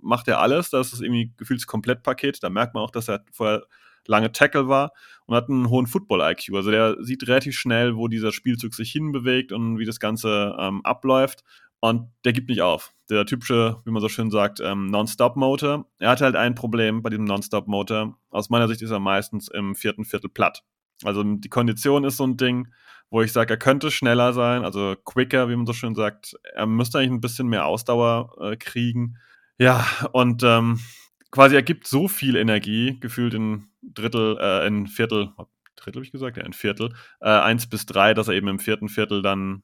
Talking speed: 205 wpm